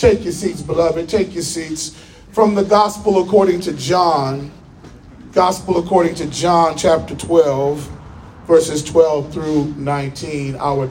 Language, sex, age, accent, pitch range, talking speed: English, male, 40-59, American, 140-175 Hz, 130 wpm